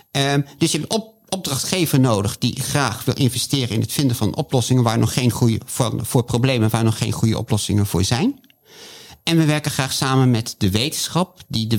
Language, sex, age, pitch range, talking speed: Dutch, male, 50-69, 115-145 Hz, 210 wpm